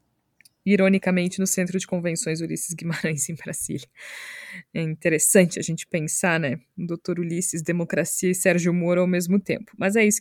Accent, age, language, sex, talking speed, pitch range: Brazilian, 20-39, Portuguese, female, 165 wpm, 170-210 Hz